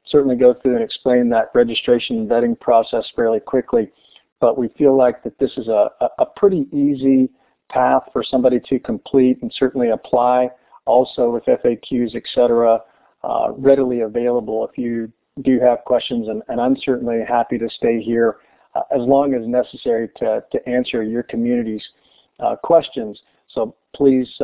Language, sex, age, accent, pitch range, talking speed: English, male, 50-69, American, 120-135 Hz, 160 wpm